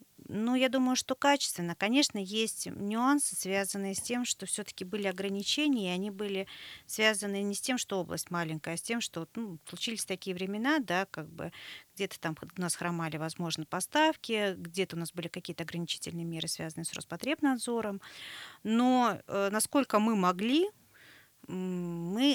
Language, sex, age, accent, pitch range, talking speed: Russian, female, 40-59, native, 180-240 Hz, 155 wpm